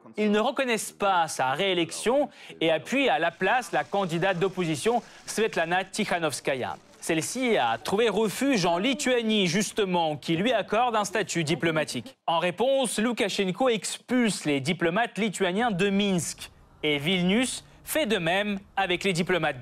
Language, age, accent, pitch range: French, 30-49, French, 170-225 Hz